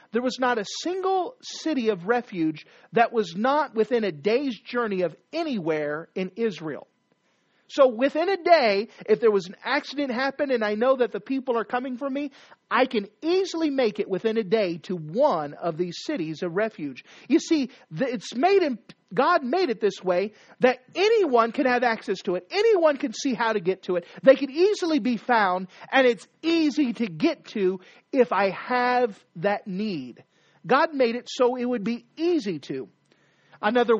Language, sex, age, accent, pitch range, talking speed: English, male, 40-59, American, 185-275 Hz, 185 wpm